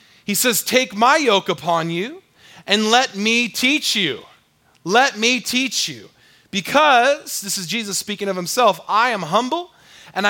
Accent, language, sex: American, English, male